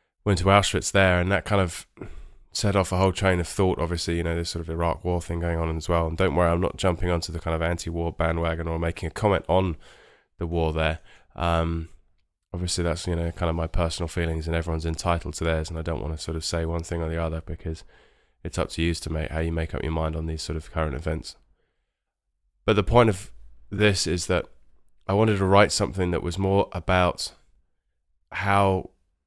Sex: male